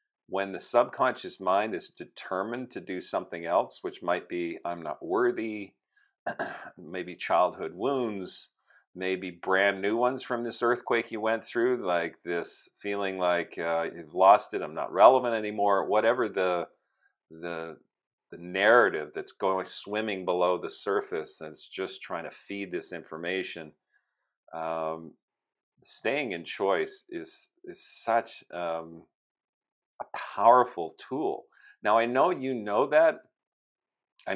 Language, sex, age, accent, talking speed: English, male, 40-59, American, 135 wpm